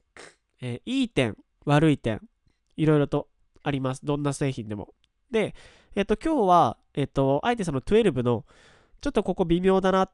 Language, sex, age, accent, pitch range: Japanese, male, 20-39, native, 115-170 Hz